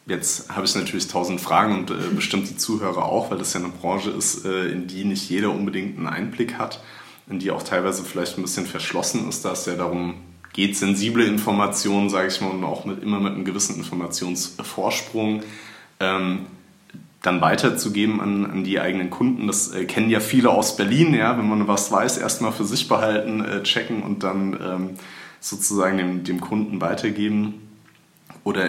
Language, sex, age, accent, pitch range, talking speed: German, male, 30-49, German, 95-105 Hz, 185 wpm